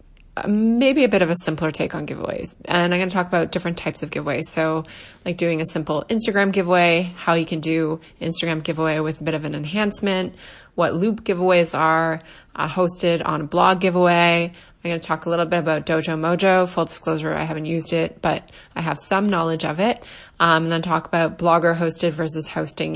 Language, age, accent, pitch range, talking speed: English, 20-39, American, 160-190 Hz, 210 wpm